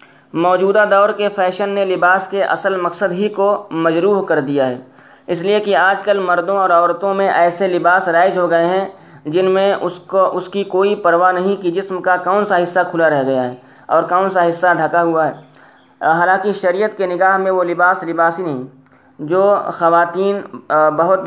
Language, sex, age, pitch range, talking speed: Urdu, male, 20-39, 165-190 Hz, 190 wpm